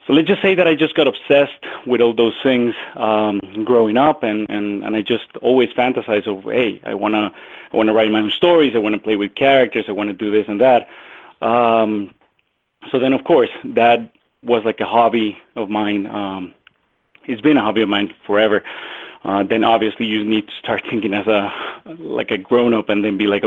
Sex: male